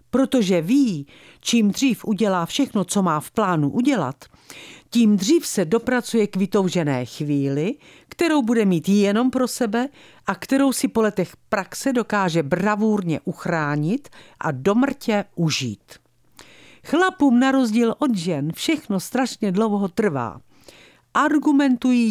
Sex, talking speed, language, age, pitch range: female, 125 wpm, Czech, 50-69, 165-240 Hz